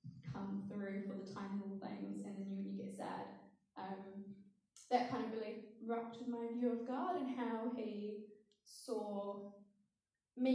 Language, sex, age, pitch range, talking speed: English, female, 10-29, 205-230 Hz, 155 wpm